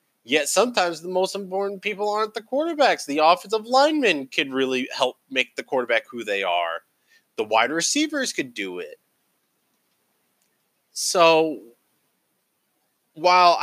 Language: English